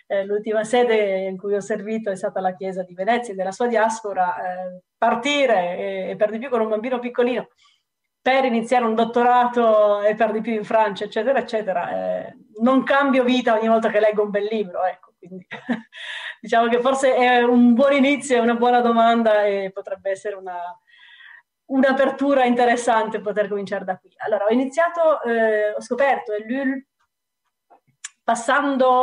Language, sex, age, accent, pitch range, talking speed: Italian, female, 30-49, native, 210-250 Hz, 165 wpm